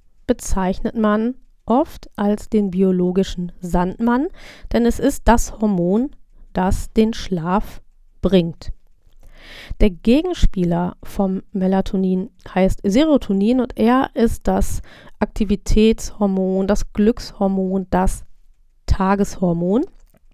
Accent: German